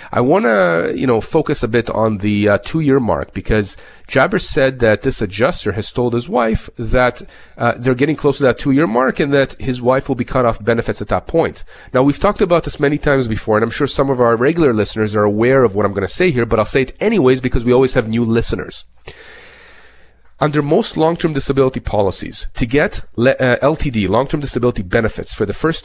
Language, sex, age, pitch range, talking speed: English, male, 30-49, 110-140 Hz, 220 wpm